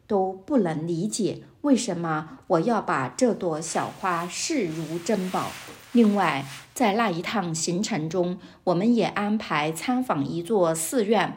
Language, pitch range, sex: Chinese, 165-230 Hz, female